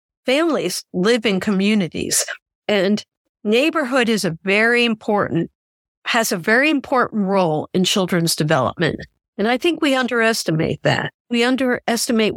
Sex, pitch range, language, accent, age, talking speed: female, 185-245 Hz, English, American, 50-69, 125 wpm